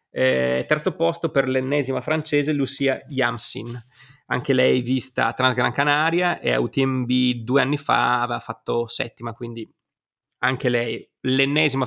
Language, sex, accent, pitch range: Italian, male, native, 120-140 Hz